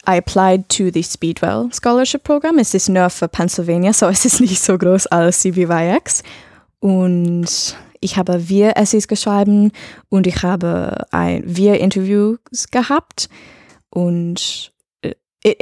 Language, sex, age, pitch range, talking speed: German, female, 10-29, 170-215 Hz, 130 wpm